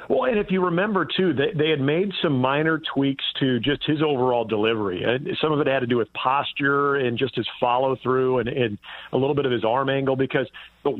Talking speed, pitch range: 230 wpm, 125-145 Hz